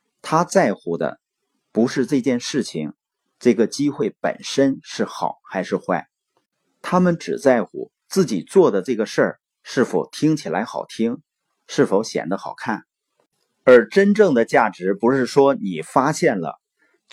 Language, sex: Chinese, male